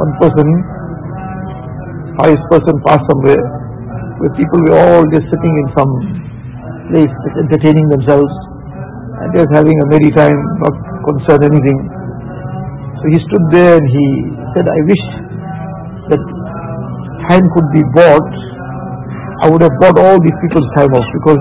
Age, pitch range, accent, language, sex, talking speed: 60-79, 145-165 Hz, Indian, English, male, 145 wpm